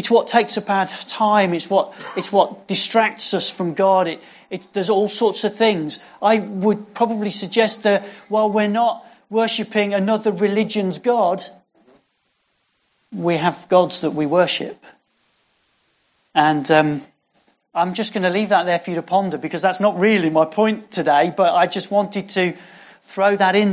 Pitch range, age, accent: 160-210 Hz, 40-59, British